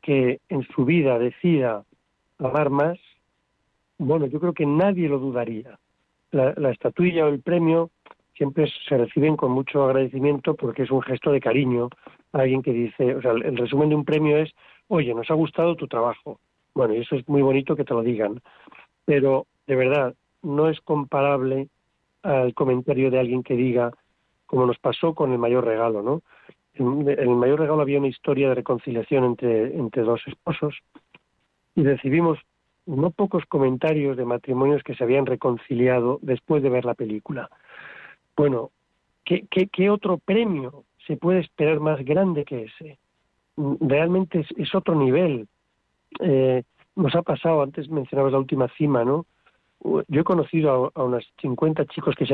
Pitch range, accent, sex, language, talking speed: 125-155 Hz, Spanish, male, Spanish, 165 wpm